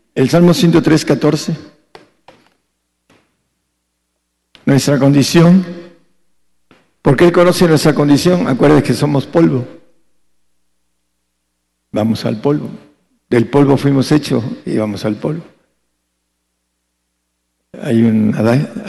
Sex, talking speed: male, 95 wpm